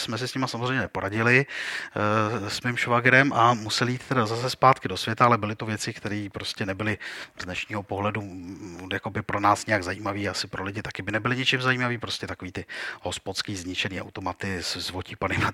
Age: 40-59